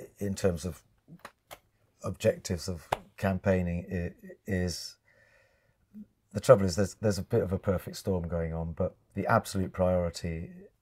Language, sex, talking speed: English, male, 135 wpm